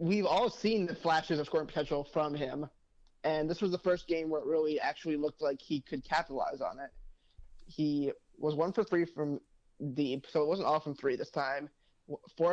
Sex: male